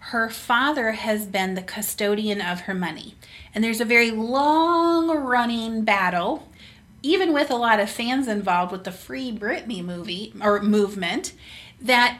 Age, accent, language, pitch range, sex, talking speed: 30-49, American, English, 195-245 Hz, female, 155 wpm